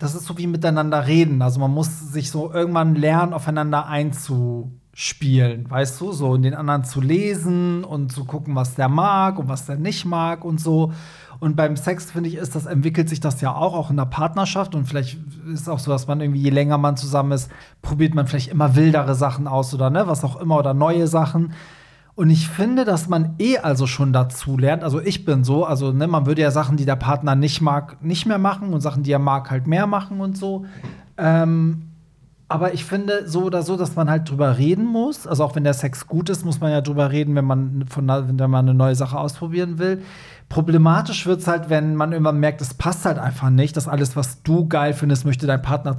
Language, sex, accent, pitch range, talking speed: German, male, German, 140-165 Hz, 230 wpm